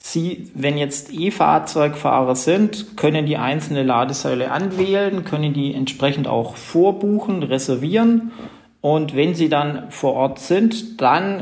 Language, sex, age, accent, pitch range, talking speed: German, male, 40-59, German, 130-170 Hz, 125 wpm